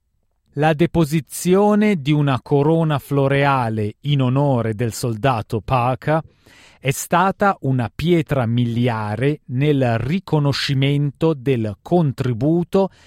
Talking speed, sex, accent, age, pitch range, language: 90 wpm, male, native, 40-59, 115-155 Hz, Italian